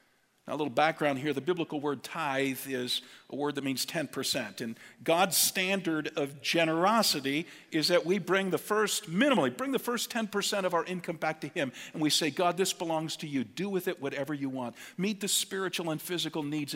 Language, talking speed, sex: English, 200 wpm, male